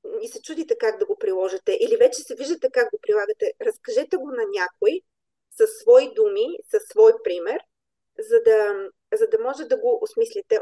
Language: Bulgarian